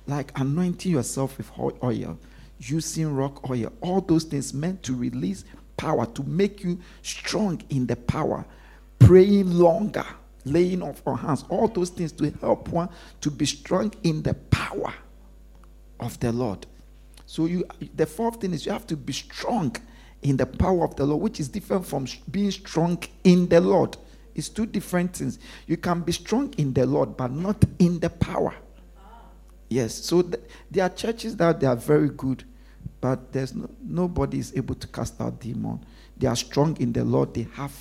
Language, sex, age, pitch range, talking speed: English, male, 50-69, 135-180 Hz, 180 wpm